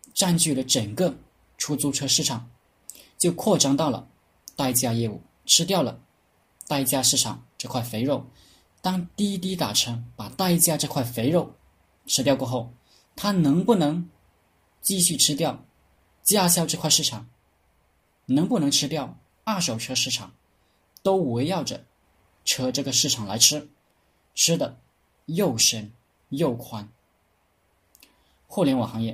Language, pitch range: Chinese, 105-145 Hz